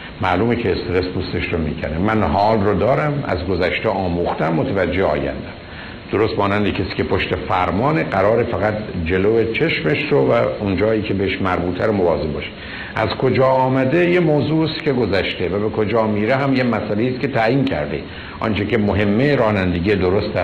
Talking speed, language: 165 wpm, Persian